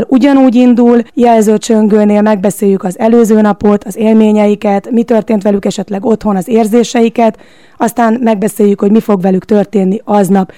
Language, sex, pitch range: Hungarian, female, 205-235 Hz